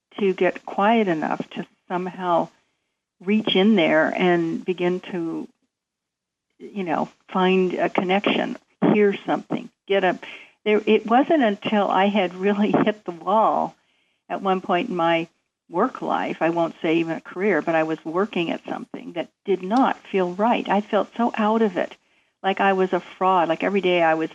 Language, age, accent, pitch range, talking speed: English, 60-79, American, 175-220 Hz, 175 wpm